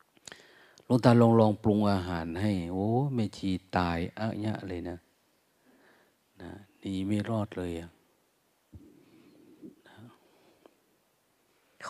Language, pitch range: Thai, 90-115 Hz